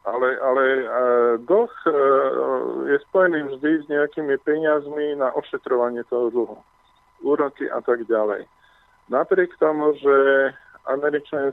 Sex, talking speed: male, 110 wpm